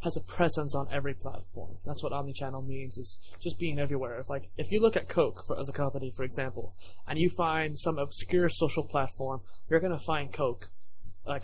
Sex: male